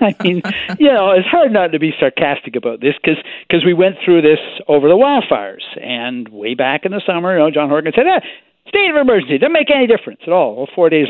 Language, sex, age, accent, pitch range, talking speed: English, male, 60-79, American, 140-225 Hz, 240 wpm